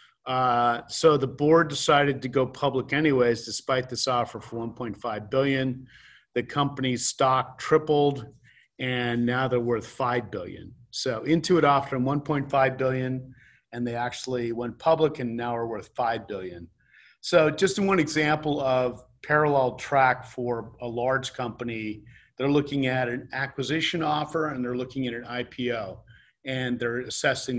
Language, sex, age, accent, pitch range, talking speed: English, male, 40-59, American, 120-140 Hz, 145 wpm